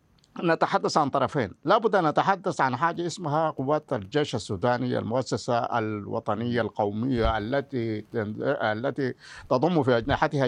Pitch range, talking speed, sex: 135-200 Hz, 115 wpm, male